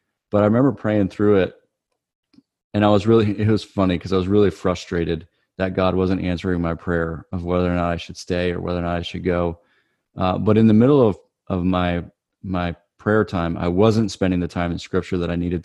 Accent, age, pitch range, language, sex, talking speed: American, 30-49, 90-105 Hz, English, male, 225 wpm